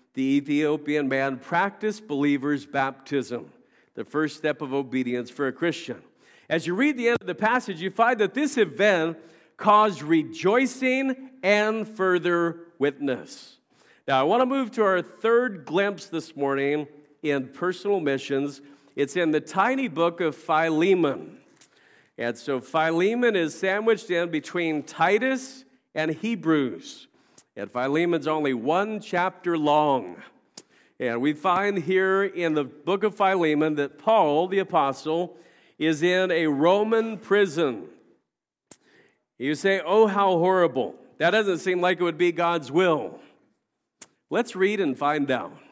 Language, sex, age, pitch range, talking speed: English, male, 50-69, 145-195 Hz, 140 wpm